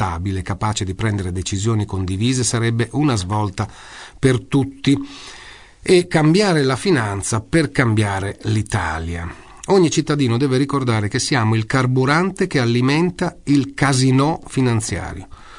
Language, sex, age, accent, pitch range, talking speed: Italian, male, 40-59, native, 100-145 Hz, 115 wpm